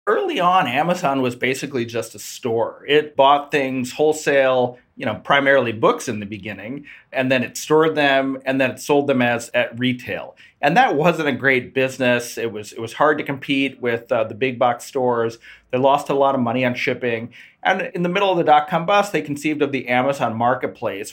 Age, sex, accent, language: 40-59, male, American, English